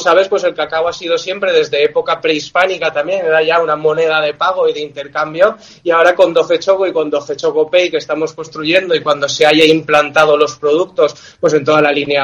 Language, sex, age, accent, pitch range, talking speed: Spanish, male, 20-39, Spanish, 155-185 Hz, 220 wpm